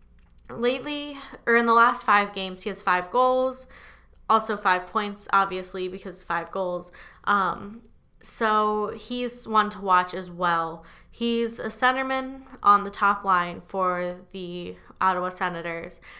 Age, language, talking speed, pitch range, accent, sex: 10-29, English, 135 wpm, 180-215 Hz, American, female